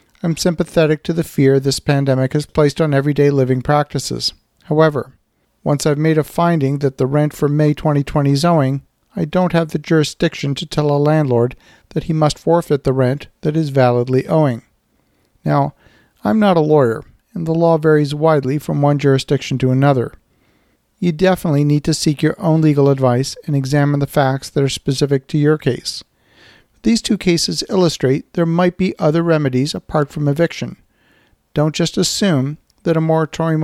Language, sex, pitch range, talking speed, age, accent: English, male, 140-165 Hz, 175 wpm, 50-69, American